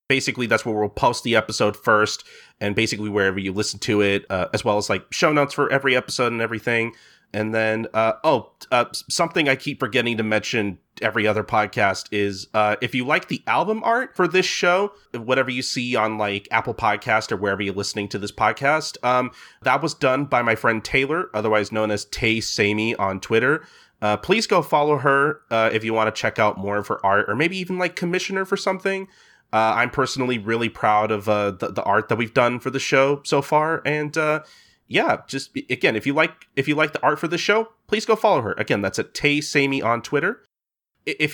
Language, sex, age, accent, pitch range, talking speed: English, male, 30-49, American, 110-145 Hz, 220 wpm